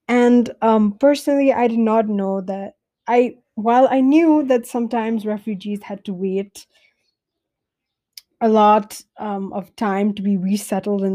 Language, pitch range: English, 195-235 Hz